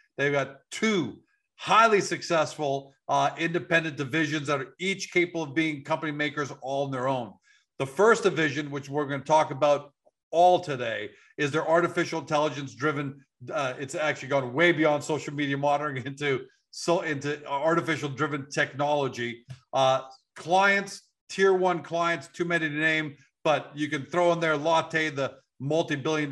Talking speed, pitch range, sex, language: 160 wpm, 135-160 Hz, male, English